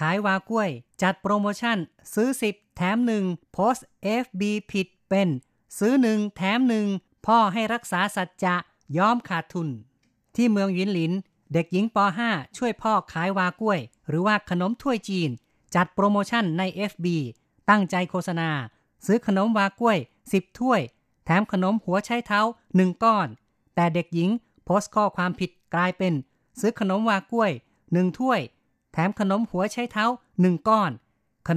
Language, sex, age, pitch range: Thai, female, 30-49, 165-210 Hz